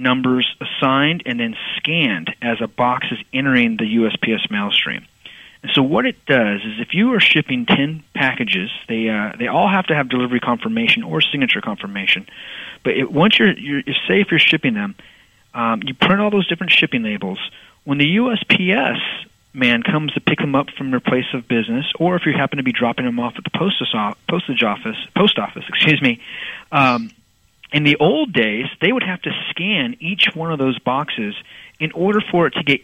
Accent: American